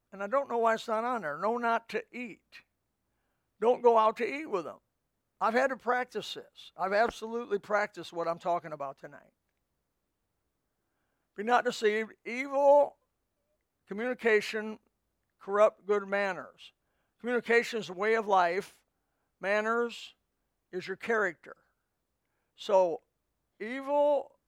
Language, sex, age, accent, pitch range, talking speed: English, male, 60-79, American, 185-235 Hz, 130 wpm